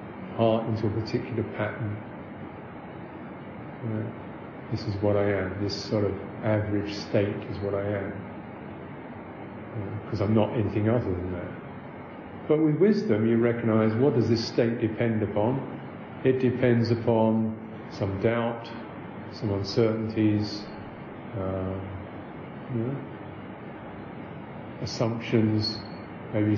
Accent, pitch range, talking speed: British, 100-120 Hz, 120 wpm